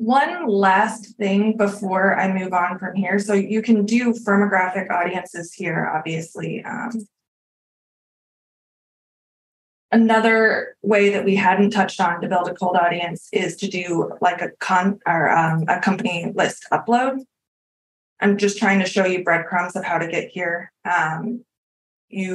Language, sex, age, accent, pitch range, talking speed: English, female, 20-39, American, 180-210 Hz, 150 wpm